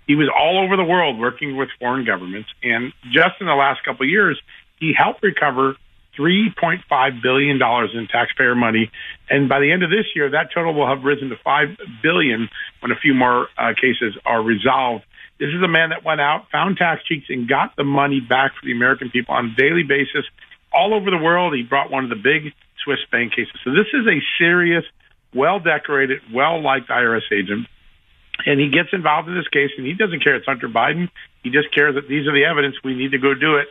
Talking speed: 215 wpm